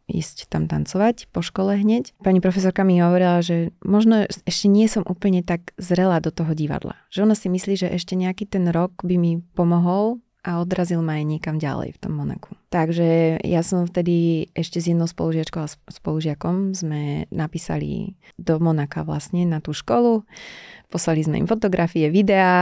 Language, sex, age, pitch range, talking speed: Slovak, female, 30-49, 160-190 Hz, 170 wpm